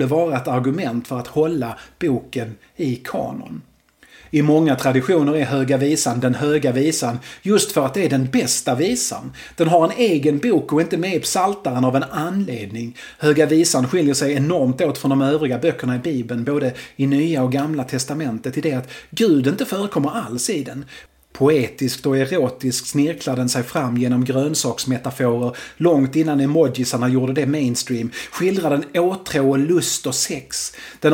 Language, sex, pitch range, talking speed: Swedish, male, 130-160 Hz, 175 wpm